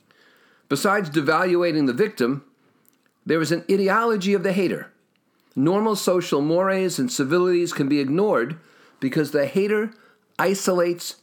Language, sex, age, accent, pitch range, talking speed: English, male, 50-69, American, 150-200 Hz, 125 wpm